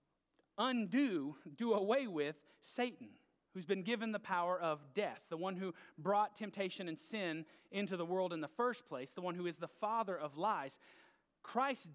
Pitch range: 180-245 Hz